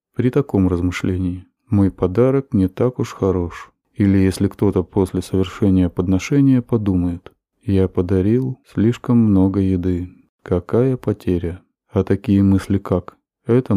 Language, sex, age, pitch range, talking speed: Russian, male, 20-39, 90-115 Hz, 120 wpm